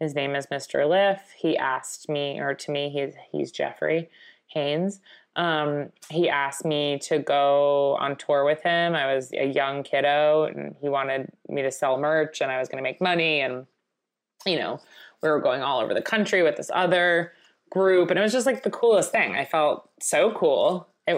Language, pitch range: English, 140-165 Hz